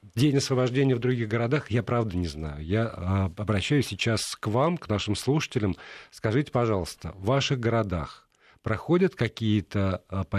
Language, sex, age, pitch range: Russian, male, 50-69, 95-120 Hz